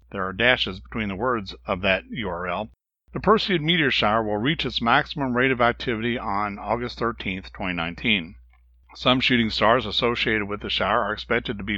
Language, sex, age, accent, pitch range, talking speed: English, male, 60-79, American, 105-130 Hz, 180 wpm